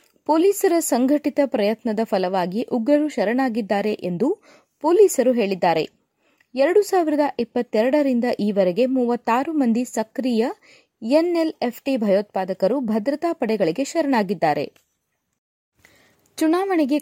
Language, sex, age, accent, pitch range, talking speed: Kannada, female, 20-39, native, 220-295 Hz, 80 wpm